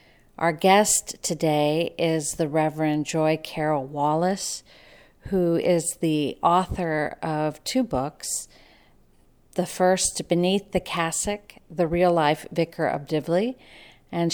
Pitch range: 150-175 Hz